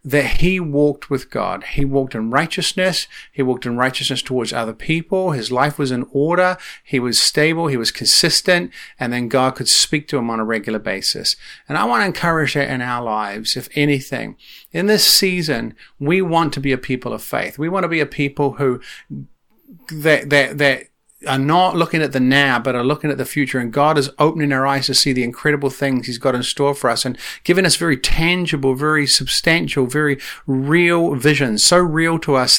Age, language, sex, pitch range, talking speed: 40-59, English, male, 130-155 Hz, 210 wpm